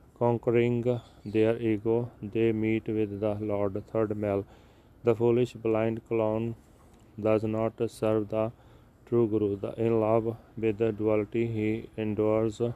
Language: Punjabi